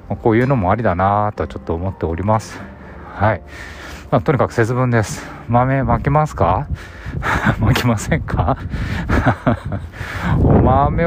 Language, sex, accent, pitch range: Japanese, male, native, 90-125 Hz